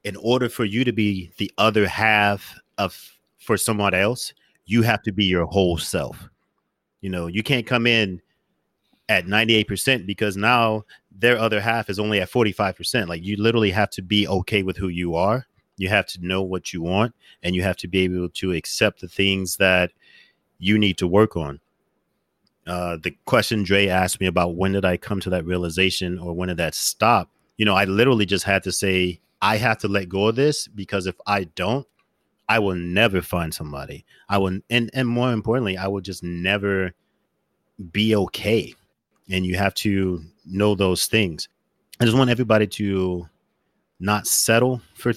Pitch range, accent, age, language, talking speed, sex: 95-115 Hz, American, 30-49, English, 185 wpm, male